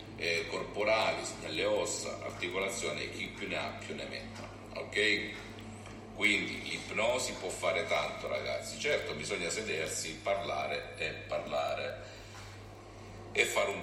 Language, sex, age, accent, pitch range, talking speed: Italian, male, 50-69, native, 90-110 Hz, 125 wpm